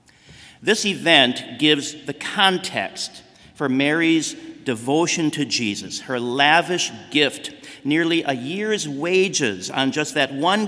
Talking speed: 120 wpm